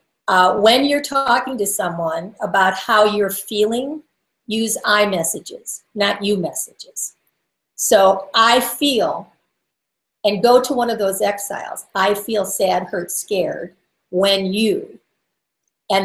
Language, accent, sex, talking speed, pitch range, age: English, American, female, 125 wpm, 190-245 Hz, 50-69